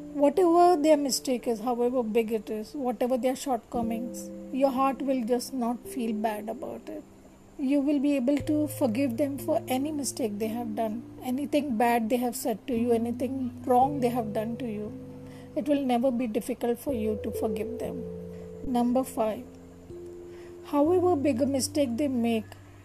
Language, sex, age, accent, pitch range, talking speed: English, female, 40-59, Indian, 225-275 Hz, 170 wpm